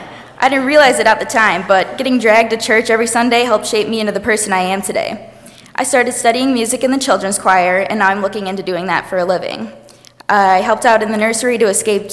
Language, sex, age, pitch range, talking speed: English, female, 20-39, 190-230 Hz, 240 wpm